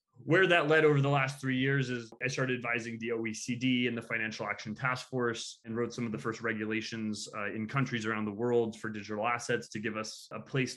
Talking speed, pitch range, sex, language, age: 230 wpm, 115-130 Hz, male, English, 20-39